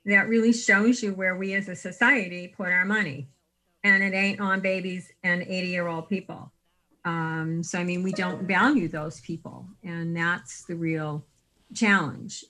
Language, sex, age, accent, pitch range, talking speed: English, female, 50-69, American, 175-210 Hz, 175 wpm